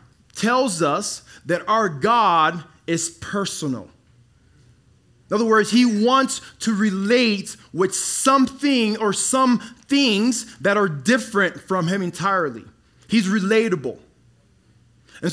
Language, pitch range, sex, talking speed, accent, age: English, 150-205 Hz, male, 110 wpm, American, 20-39